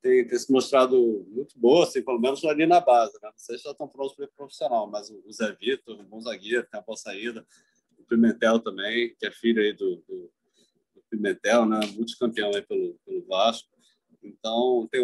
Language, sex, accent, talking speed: Portuguese, male, Brazilian, 205 wpm